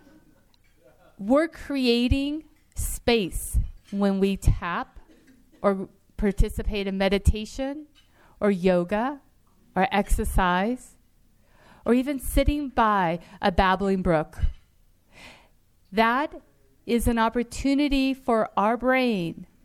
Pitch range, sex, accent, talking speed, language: 185-255 Hz, female, American, 85 wpm, English